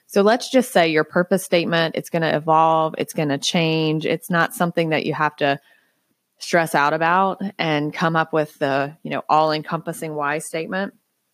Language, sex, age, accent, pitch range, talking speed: English, female, 20-39, American, 150-180 Hz, 185 wpm